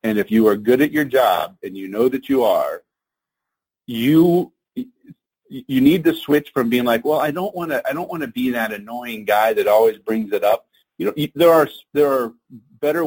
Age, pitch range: 40-59, 120-170 Hz